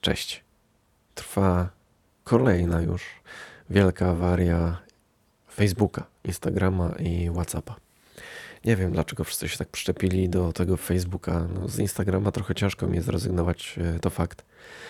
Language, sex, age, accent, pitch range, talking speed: Polish, male, 20-39, native, 85-100 Hz, 115 wpm